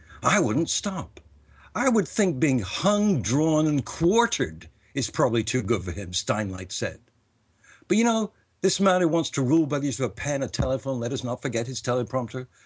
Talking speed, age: 200 wpm, 60-79